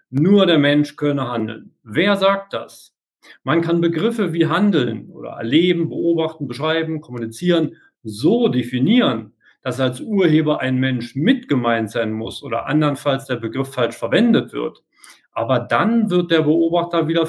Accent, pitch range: German, 140-180 Hz